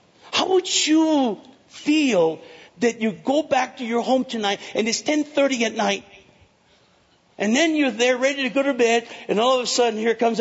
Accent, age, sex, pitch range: American, 60-79, male, 195-300 Hz